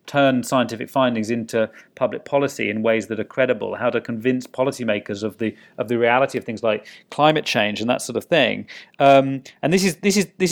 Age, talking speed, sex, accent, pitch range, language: 30-49, 210 wpm, male, British, 110-130 Hz, English